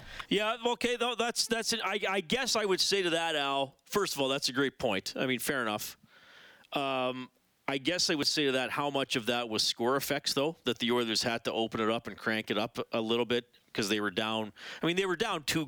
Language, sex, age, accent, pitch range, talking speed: English, male, 40-59, American, 110-145 Hz, 255 wpm